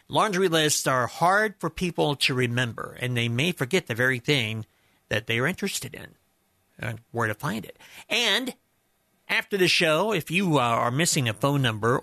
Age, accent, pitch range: 50-69, American, 115-150 Hz